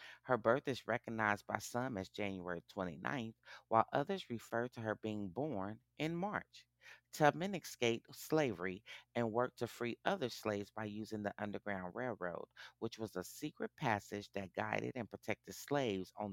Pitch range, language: 95-125 Hz, English